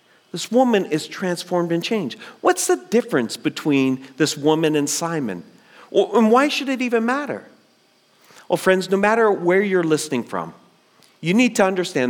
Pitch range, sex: 135-210 Hz, male